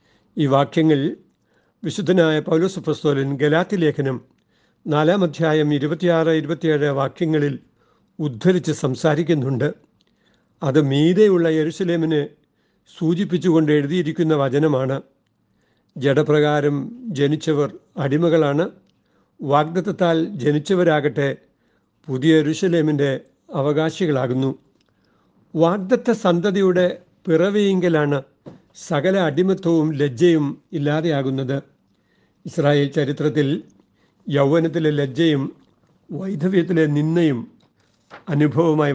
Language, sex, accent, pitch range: Malayalam, male, native, 145-170 Hz